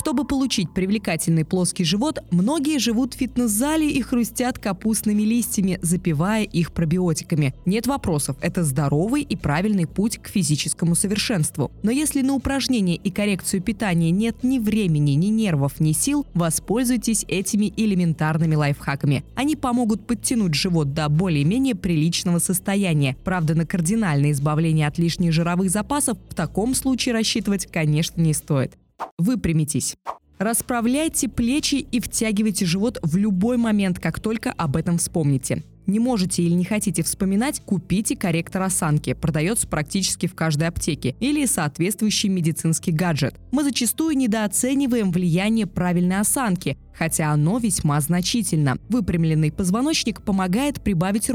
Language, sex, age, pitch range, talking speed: Russian, female, 20-39, 165-230 Hz, 130 wpm